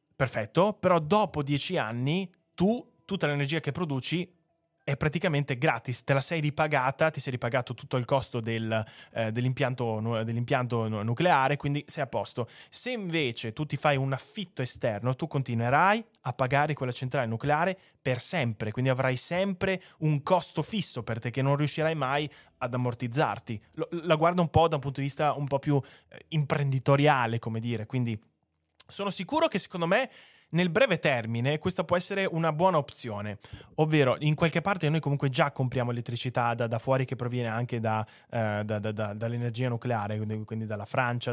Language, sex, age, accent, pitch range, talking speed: Italian, male, 20-39, native, 120-160 Hz, 175 wpm